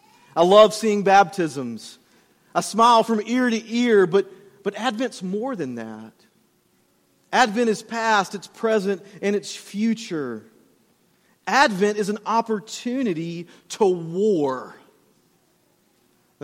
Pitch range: 180-220 Hz